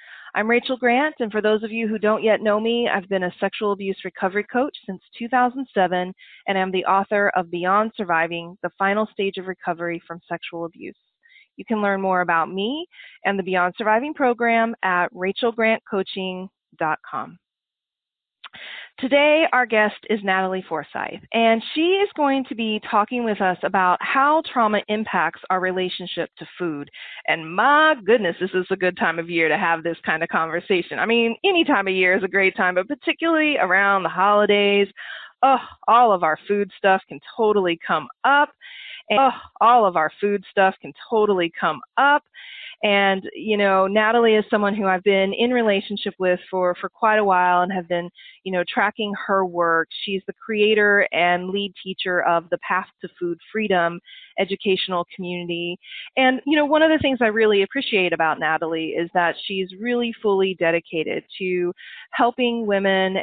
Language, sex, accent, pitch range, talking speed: English, female, American, 180-230 Hz, 175 wpm